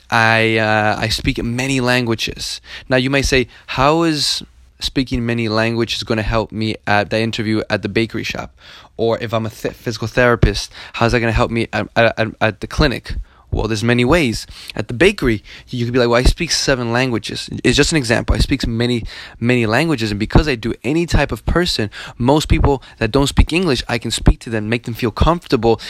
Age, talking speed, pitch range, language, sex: 20-39, 215 wpm, 110-130 Hz, English, male